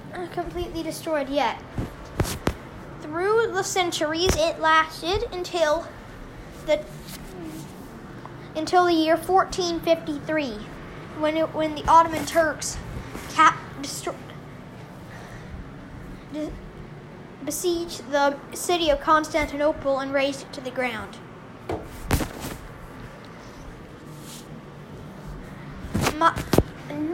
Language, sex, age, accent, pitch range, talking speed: English, female, 10-29, American, 305-350 Hz, 80 wpm